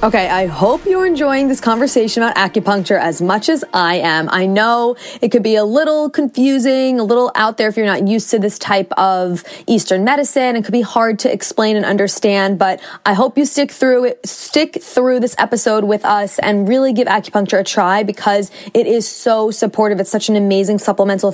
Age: 20-39